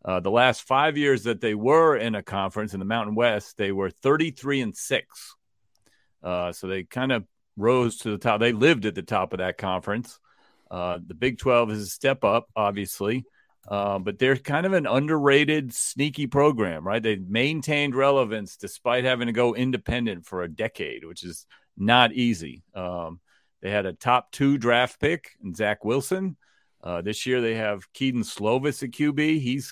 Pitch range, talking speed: 105-135 Hz, 185 wpm